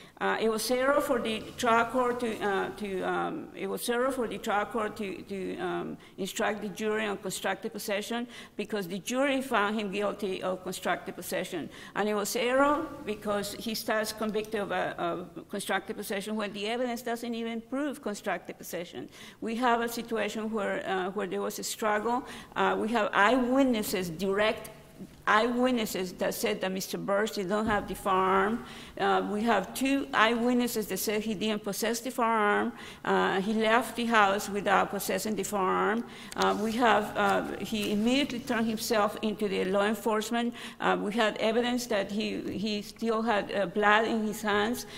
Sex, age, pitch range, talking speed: female, 50-69, 205-230 Hz, 175 wpm